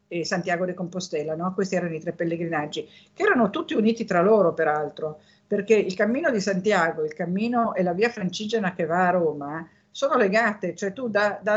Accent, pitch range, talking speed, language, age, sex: native, 180-230 Hz, 185 wpm, Italian, 50-69, female